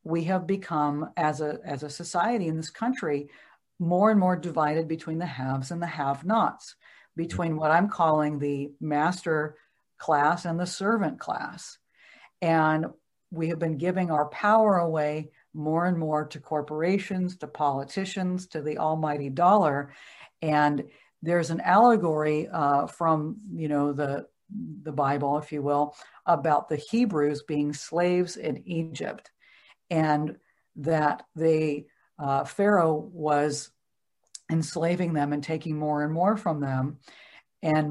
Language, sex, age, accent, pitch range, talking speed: English, female, 60-79, American, 150-175 Hz, 140 wpm